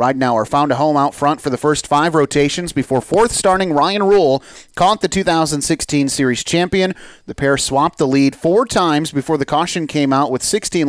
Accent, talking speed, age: American, 185 wpm, 30-49